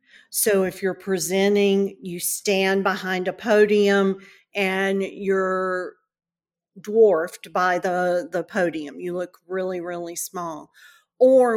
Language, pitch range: English, 185-205 Hz